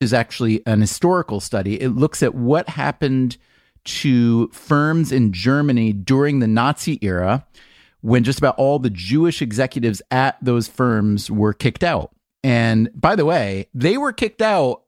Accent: American